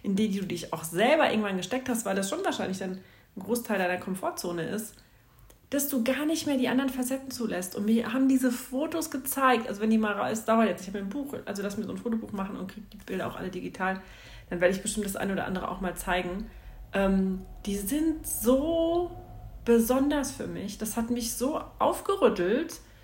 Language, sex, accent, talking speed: German, female, German, 215 wpm